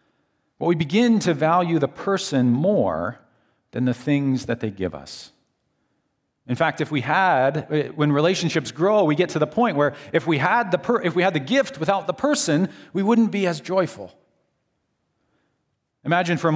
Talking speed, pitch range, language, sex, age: 185 wpm, 135-185 Hz, English, male, 40-59